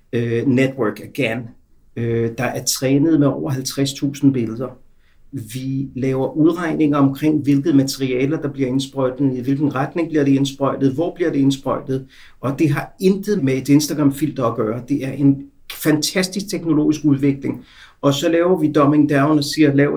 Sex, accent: male, native